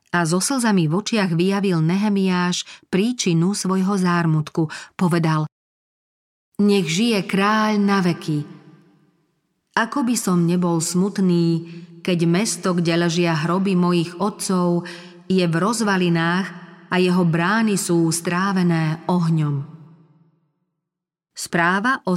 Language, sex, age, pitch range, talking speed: Slovak, female, 40-59, 165-195 Hz, 105 wpm